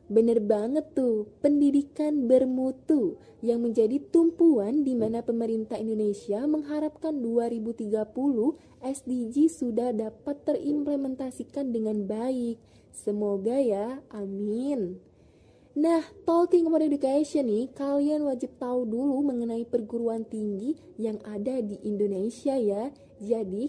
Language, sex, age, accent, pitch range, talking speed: Indonesian, female, 20-39, native, 220-290 Hz, 105 wpm